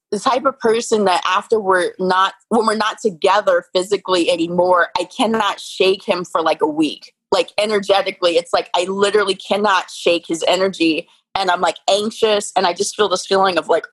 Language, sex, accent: English, female, American